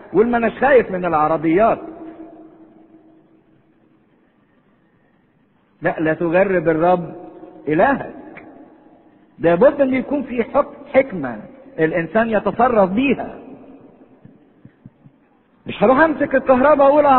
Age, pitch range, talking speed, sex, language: 50-69, 165-260 Hz, 80 wpm, male, English